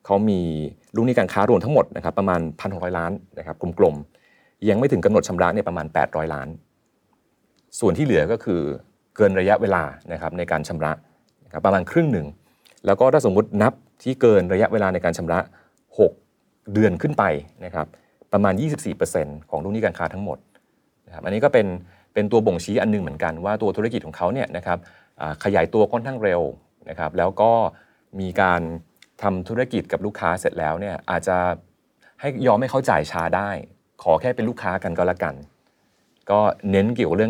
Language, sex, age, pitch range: Thai, male, 30-49, 80-105 Hz